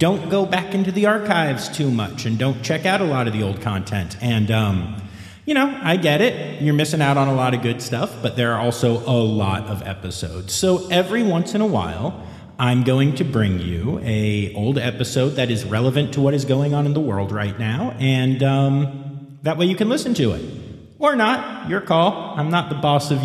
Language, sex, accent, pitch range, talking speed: English, male, American, 115-190 Hz, 225 wpm